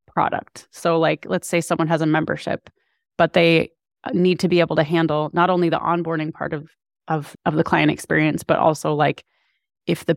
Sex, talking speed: female, 195 wpm